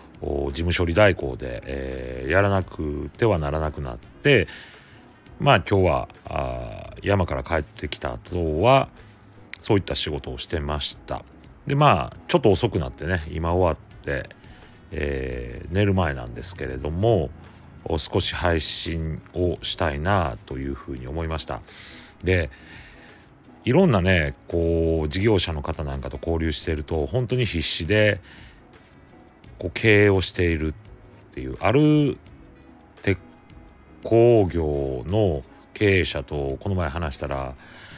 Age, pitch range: 40-59, 75-100 Hz